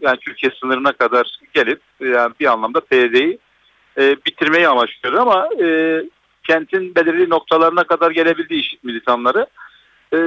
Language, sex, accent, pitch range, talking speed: Turkish, male, native, 125-170 Hz, 130 wpm